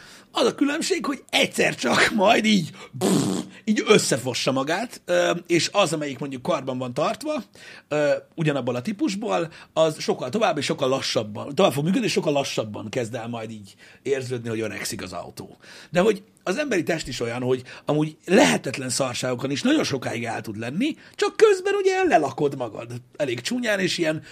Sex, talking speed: male, 165 wpm